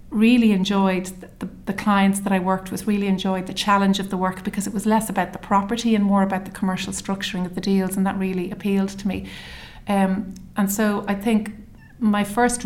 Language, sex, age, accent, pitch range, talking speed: English, female, 30-49, Irish, 185-205 Hz, 215 wpm